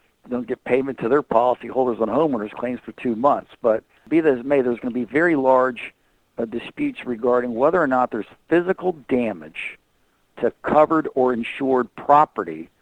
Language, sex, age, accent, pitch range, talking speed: English, male, 50-69, American, 115-130 Hz, 180 wpm